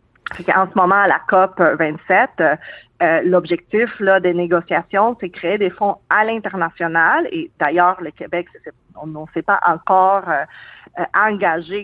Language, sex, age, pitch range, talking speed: French, female, 40-59, 165-195 Hz, 145 wpm